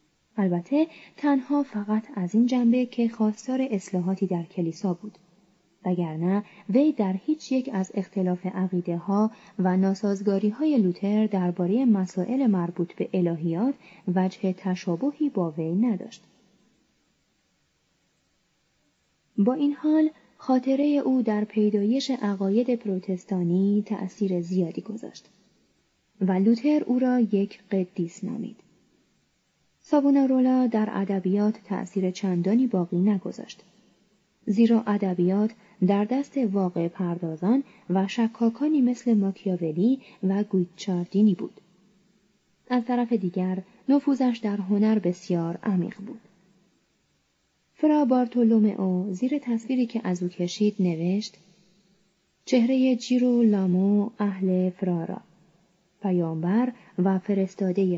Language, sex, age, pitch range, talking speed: Persian, female, 30-49, 185-235 Hz, 105 wpm